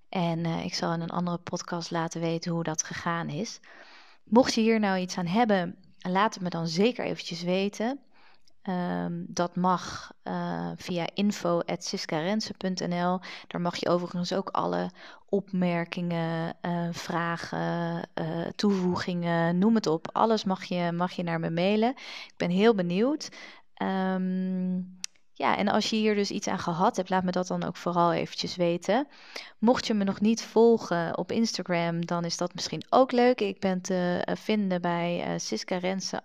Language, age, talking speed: Dutch, 20-39, 160 wpm